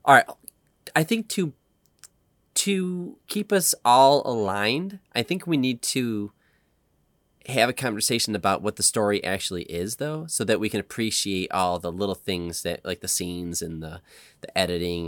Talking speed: 165 wpm